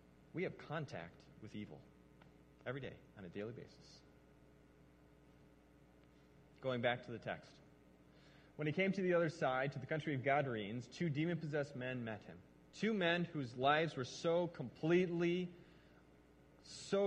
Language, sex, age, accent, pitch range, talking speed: English, male, 30-49, American, 120-165 Hz, 145 wpm